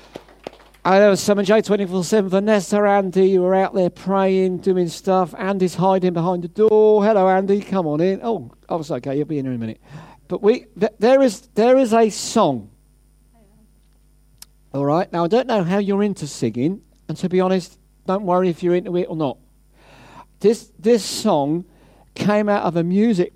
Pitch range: 160-215 Hz